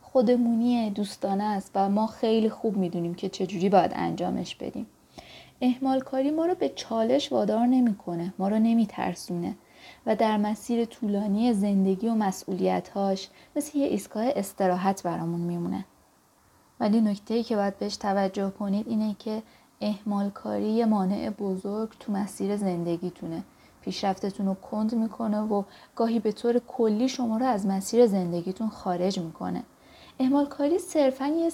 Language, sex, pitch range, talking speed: Persian, female, 190-235 Hz, 140 wpm